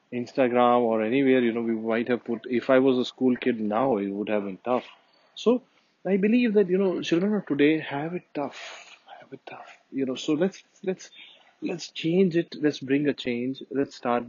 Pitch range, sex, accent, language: 120-155 Hz, male, Indian, English